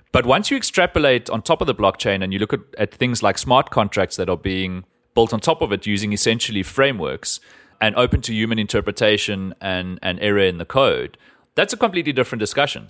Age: 30-49